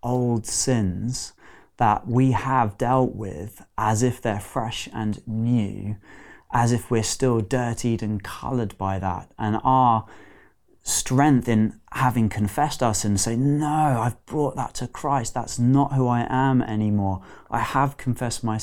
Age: 20-39